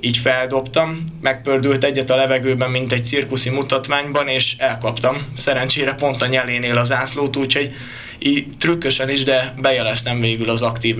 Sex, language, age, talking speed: male, Hungarian, 20-39, 145 wpm